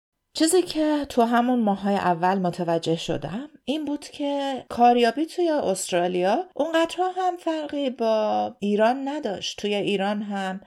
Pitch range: 185-255 Hz